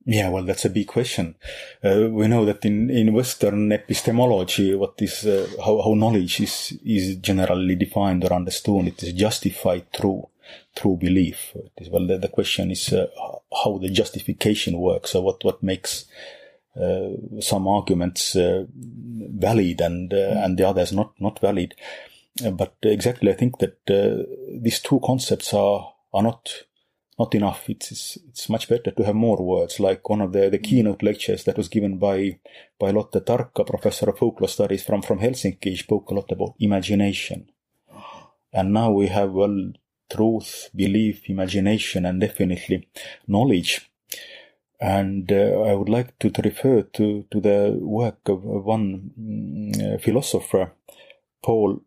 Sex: male